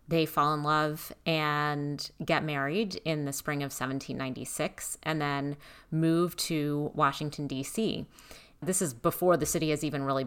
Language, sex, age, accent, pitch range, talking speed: English, female, 30-49, American, 140-165 Hz, 150 wpm